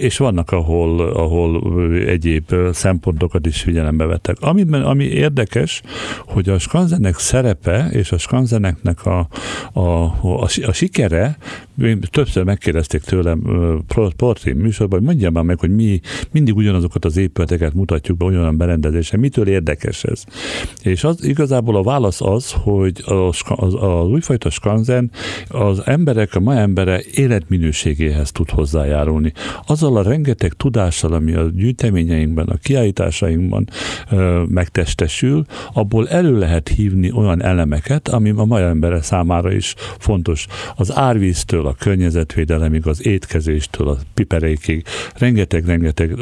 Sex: male